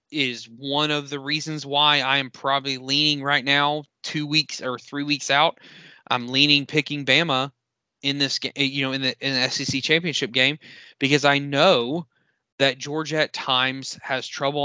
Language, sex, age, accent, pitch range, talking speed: English, male, 20-39, American, 130-150 Hz, 175 wpm